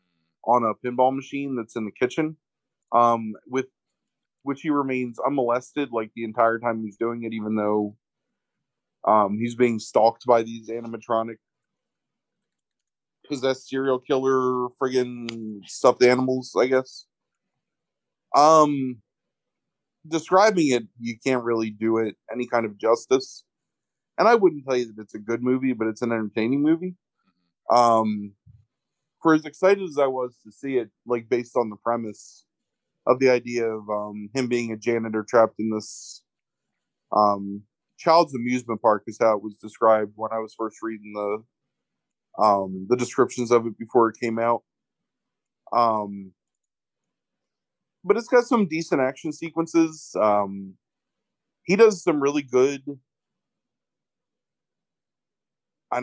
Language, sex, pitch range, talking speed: English, male, 110-135 Hz, 140 wpm